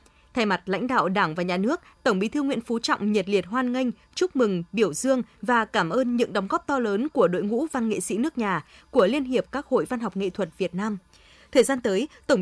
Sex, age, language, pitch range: female, 20-39, Vietnamese, 200-260 Hz